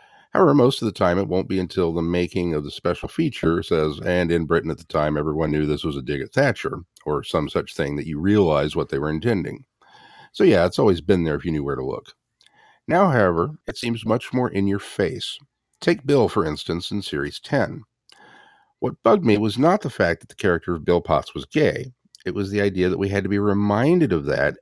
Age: 50-69